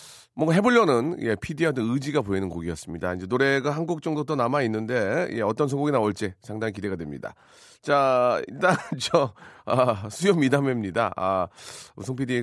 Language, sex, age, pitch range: Korean, male, 40-59, 100-140 Hz